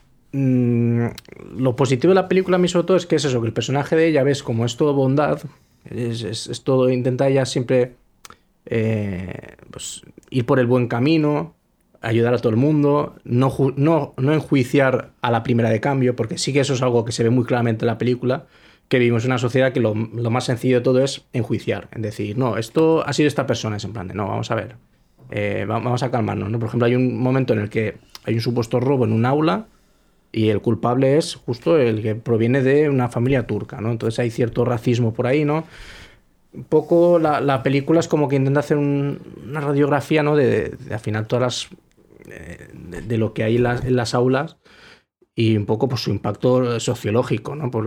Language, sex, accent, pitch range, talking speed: Spanish, male, Spanish, 115-140 Hz, 215 wpm